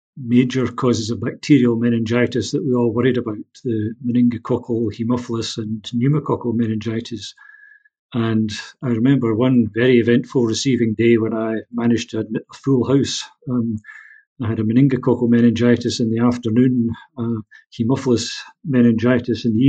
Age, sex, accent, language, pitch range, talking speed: 50-69, male, British, English, 115-130 Hz, 135 wpm